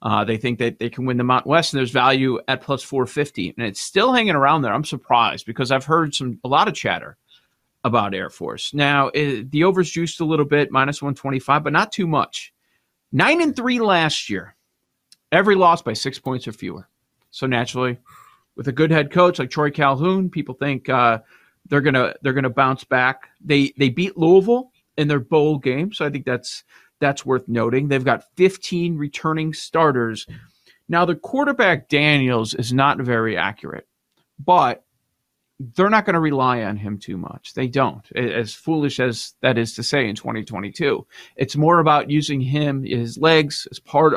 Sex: male